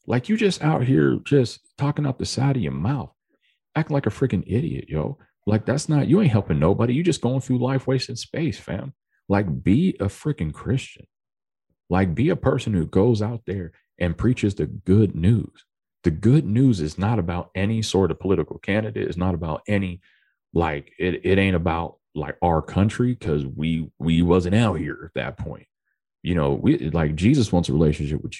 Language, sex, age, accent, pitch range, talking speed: English, male, 40-59, American, 90-130 Hz, 195 wpm